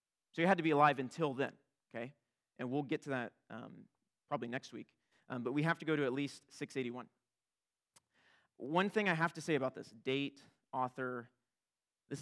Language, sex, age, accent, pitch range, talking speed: English, male, 30-49, American, 130-165 Hz, 190 wpm